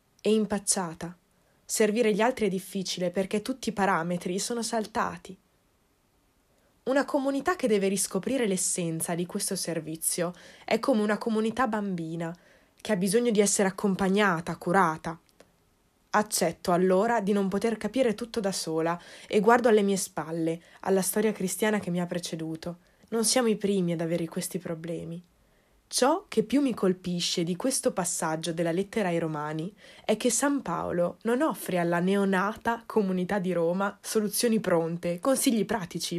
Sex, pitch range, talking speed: female, 170-215 Hz, 150 wpm